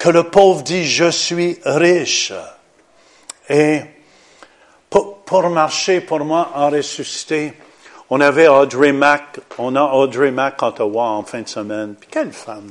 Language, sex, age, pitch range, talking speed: French, male, 50-69, 125-180 Hz, 150 wpm